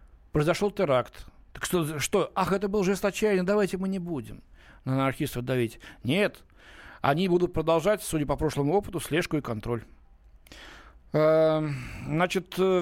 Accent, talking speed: native, 130 wpm